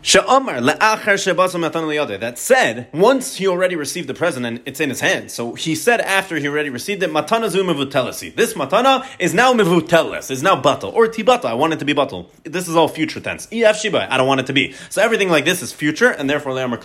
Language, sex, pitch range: English, male, 130-190 Hz